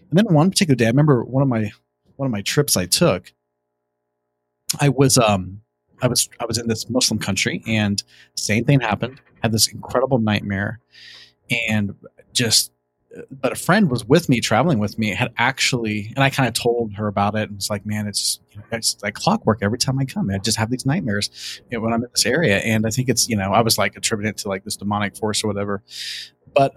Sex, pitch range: male, 105-130 Hz